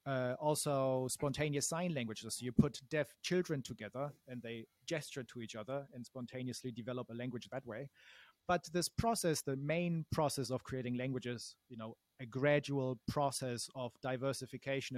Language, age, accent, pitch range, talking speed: English, 30-49, German, 120-140 Hz, 160 wpm